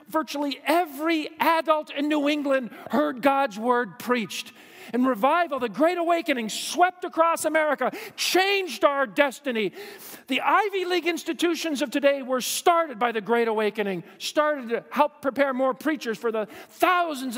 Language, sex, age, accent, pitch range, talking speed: English, male, 40-59, American, 240-315 Hz, 145 wpm